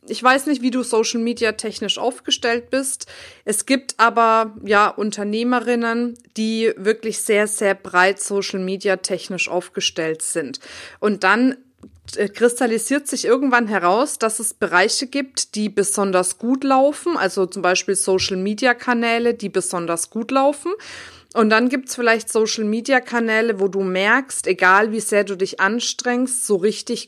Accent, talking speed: German, 150 wpm